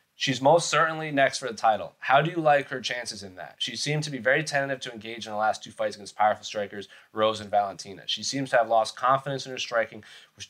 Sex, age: male, 30-49